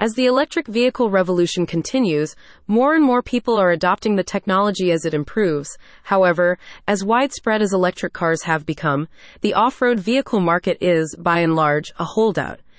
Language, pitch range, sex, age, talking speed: English, 170-220 Hz, female, 30-49, 165 wpm